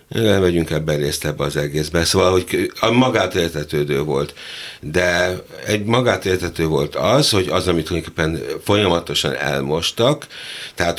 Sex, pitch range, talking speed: male, 80-105 Hz, 120 wpm